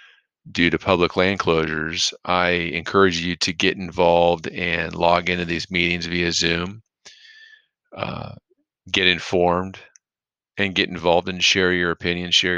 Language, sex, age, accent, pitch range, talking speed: English, male, 40-59, American, 85-95 Hz, 140 wpm